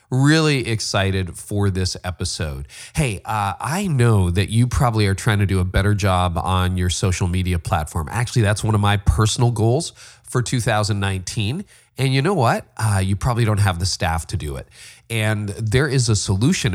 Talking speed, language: 185 wpm, English